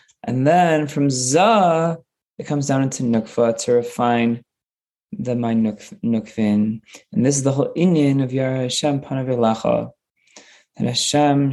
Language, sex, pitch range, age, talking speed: English, male, 115-135 Hz, 20-39, 135 wpm